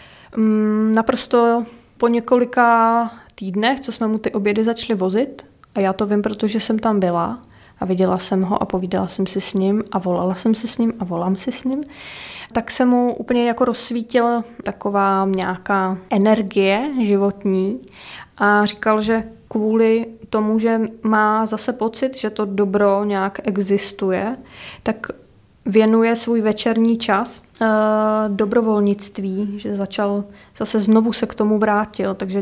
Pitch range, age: 195-225 Hz, 20-39